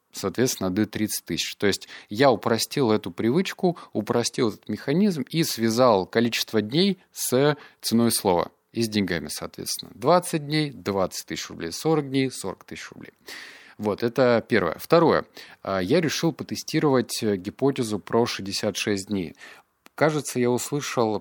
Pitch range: 95-125 Hz